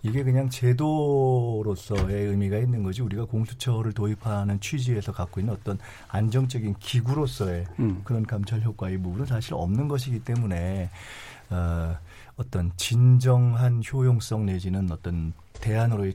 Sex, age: male, 40-59